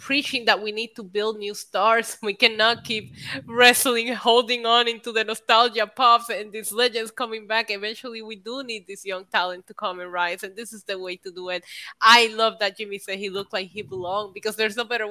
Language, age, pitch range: English, 20-39, 195-245 Hz